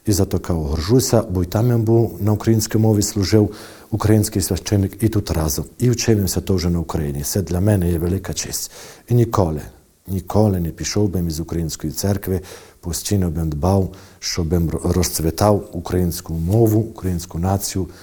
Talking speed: 155 wpm